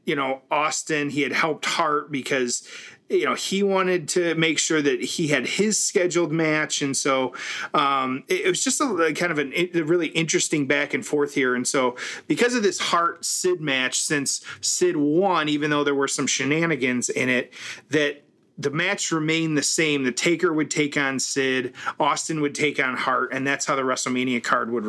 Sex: male